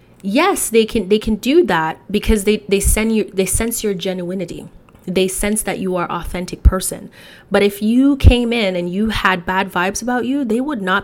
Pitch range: 175-210 Hz